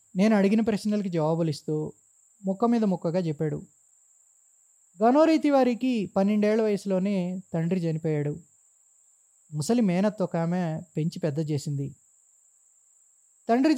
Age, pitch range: 20-39, 165-215 Hz